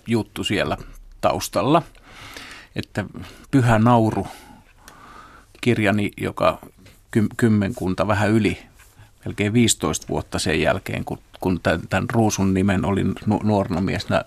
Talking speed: 95 wpm